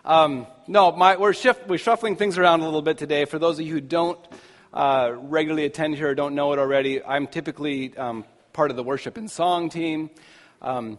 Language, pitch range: English, 125-155 Hz